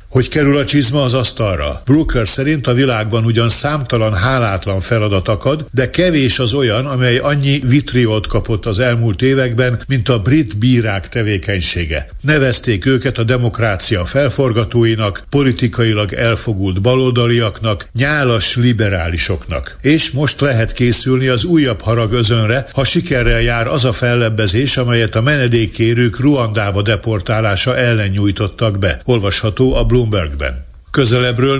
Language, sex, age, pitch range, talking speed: Hungarian, male, 60-79, 110-130 Hz, 125 wpm